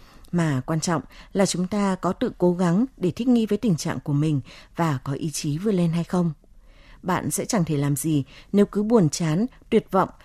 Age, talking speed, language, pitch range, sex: 20-39, 220 wpm, Vietnamese, 155-215 Hz, female